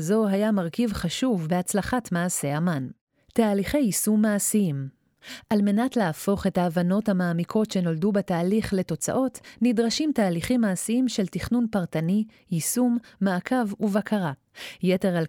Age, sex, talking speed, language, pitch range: 30-49, female, 120 wpm, Hebrew, 175-225 Hz